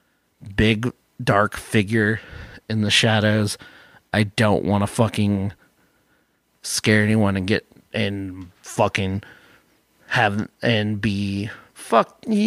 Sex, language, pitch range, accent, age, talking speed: male, English, 110-145 Hz, American, 30-49, 105 wpm